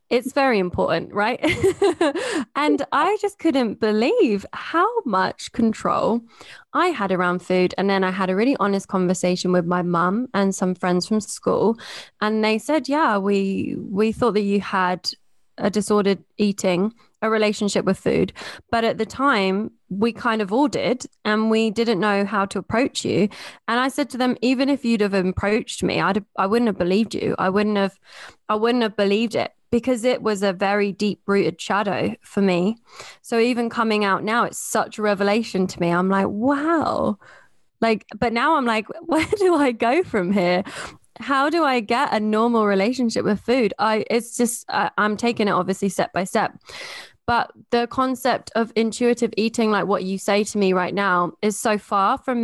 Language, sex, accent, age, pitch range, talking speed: English, female, British, 20-39, 195-240 Hz, 190 wpm